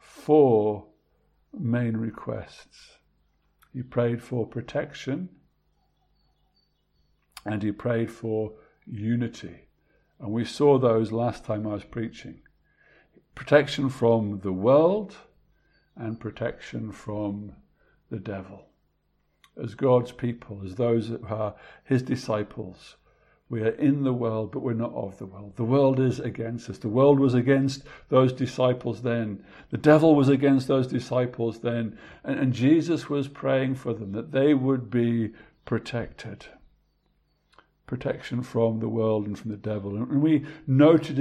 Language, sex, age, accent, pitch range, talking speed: English, male, 60-79, British, 105-135 Hz, 135 wpm